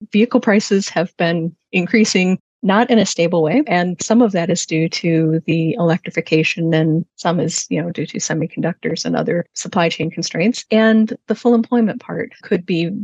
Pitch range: 170-215 Hz